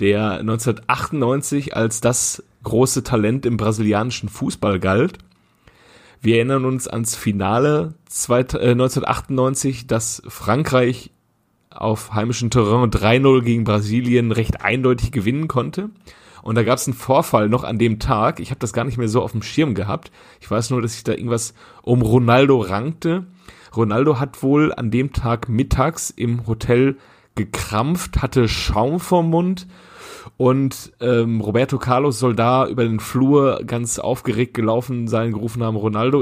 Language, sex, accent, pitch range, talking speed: German, male, German, 110-130 Hz, 150 wpm